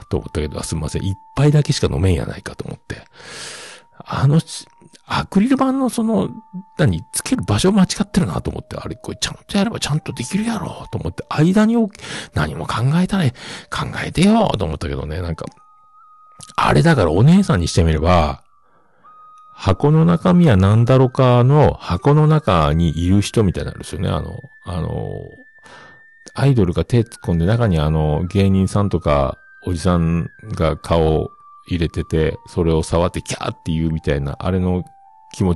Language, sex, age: Japanese, male, 50-69